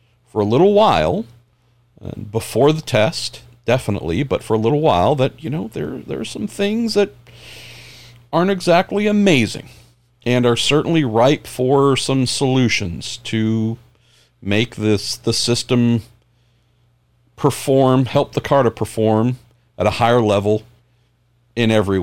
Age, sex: 40-59, male